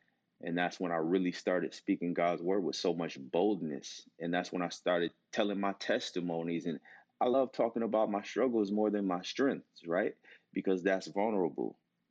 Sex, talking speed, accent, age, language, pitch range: male, 180 wpm, American, 30-49, English, 85-105 Hz